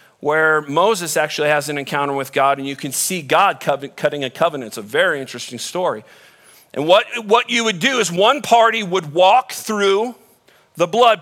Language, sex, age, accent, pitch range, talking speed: English, male, 40-59, American, 145-220 Hz, 185 wpm